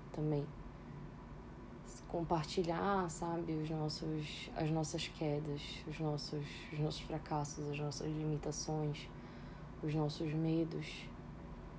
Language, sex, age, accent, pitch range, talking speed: Portuguese, female, 20-39, Brazilian, 155-185 Hz, 80 wpm